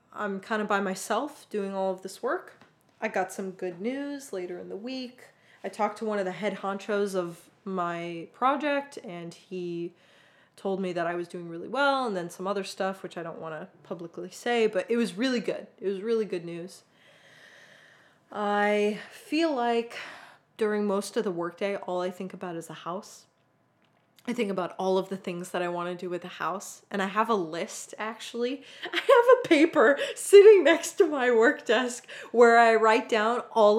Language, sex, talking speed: English, female, 200 wpm